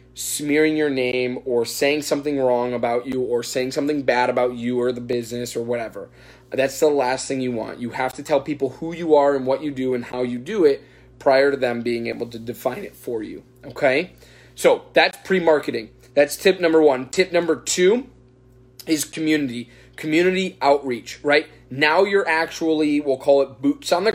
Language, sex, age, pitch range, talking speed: English, male, 20-39, 125-155 Hz, 195 wpm